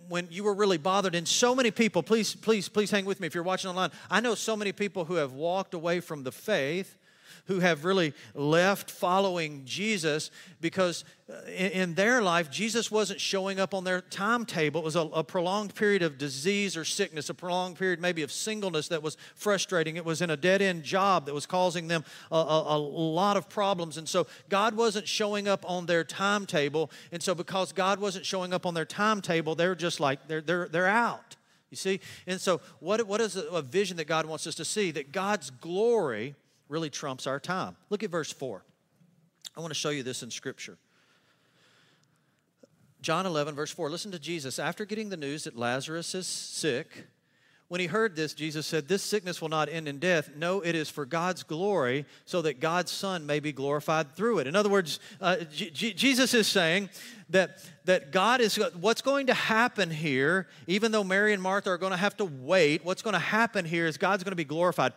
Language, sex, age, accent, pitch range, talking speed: English, male, 40-59, American, 160-195 Hz, 210 wpm